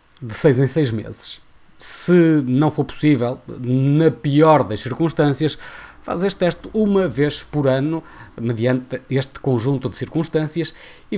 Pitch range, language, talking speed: 125-160 Hz, Portuguese, 140 wpm